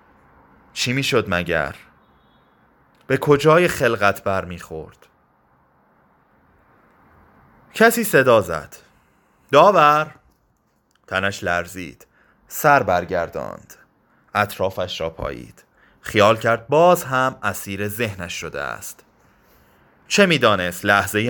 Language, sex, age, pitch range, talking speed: Persian, male, 30-49, 100-140 Hz, 85 wpm